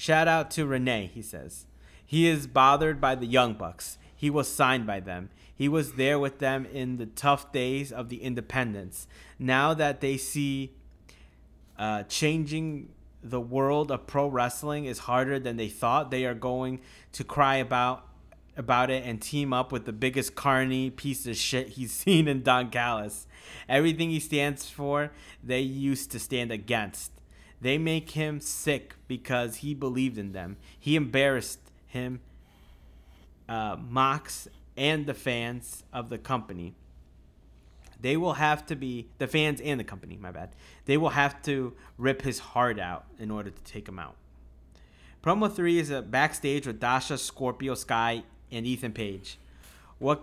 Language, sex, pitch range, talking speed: English, male, 105-140 Hz, 165 wpm